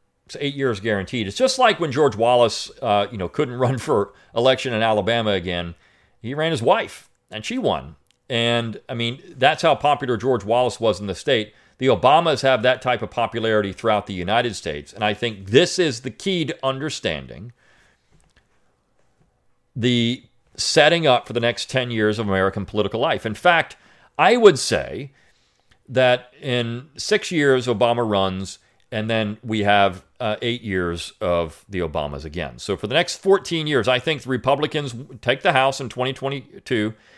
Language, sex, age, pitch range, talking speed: English, male, 40-59, 100-130 Hz, 175 wpm